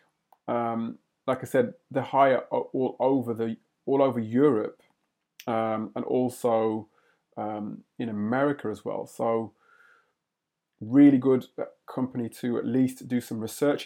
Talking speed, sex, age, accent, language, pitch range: 130 wpm, male, 20-39, British, English, 115-135 Hz